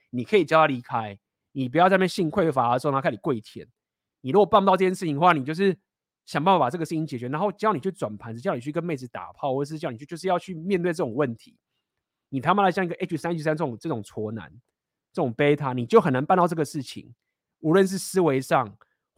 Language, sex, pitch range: Chinese, male, 125-175 Hz